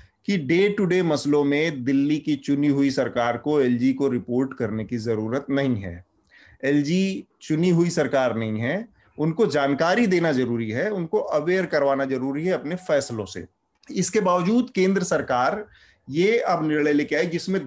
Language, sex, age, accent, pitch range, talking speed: Hindi, male, 30-49, native, 125-190 Hz, 165 wpm